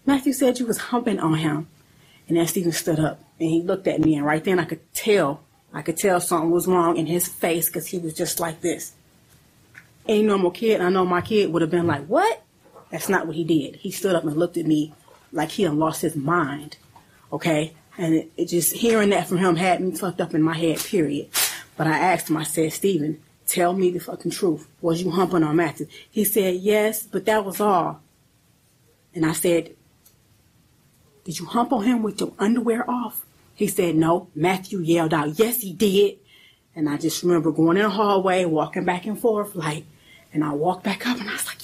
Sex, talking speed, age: female, 220 wpm, 30-49